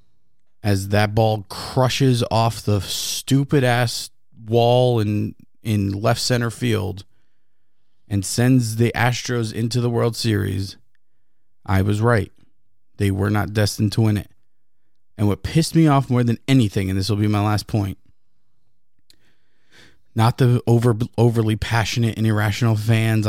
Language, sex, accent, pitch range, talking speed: English, male, American, 105-130 Hz, 135 wpm